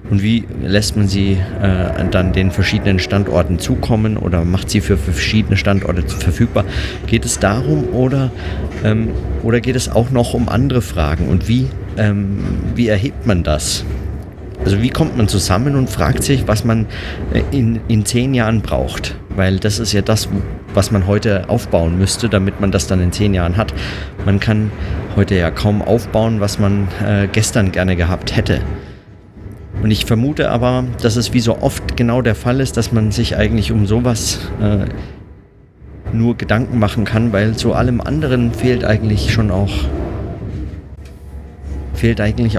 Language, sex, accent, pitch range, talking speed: German, male, German, 90-110 Hz, 165 wpm